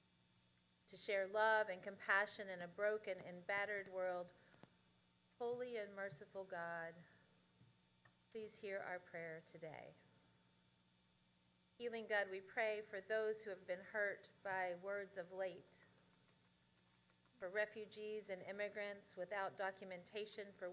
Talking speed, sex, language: 120 wpm, female, English